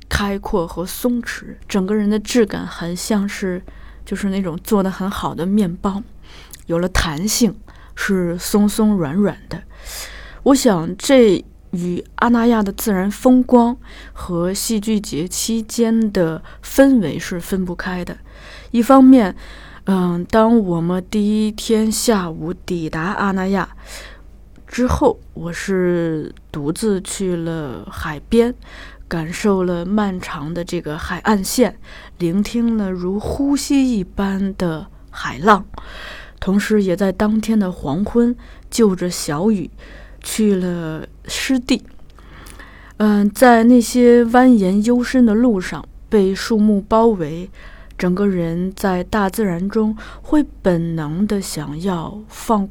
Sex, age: female, 20-39